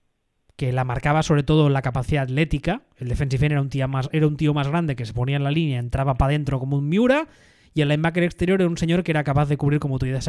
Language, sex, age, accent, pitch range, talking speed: Spanish, male, 20-39, Spanish, 135-170 Hz, 255 wpm